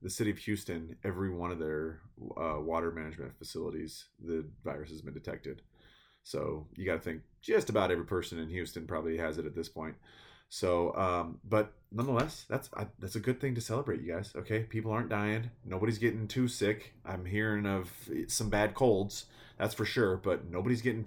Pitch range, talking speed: 85-115 Hz, 190 wpm